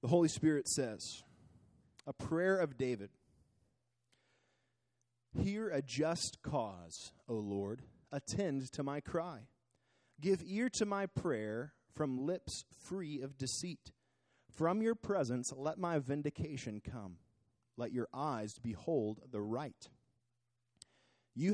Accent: American